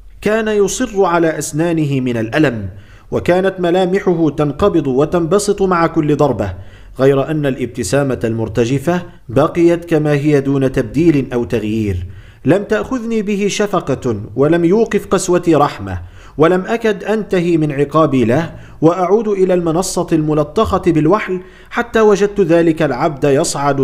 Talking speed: 120 wpm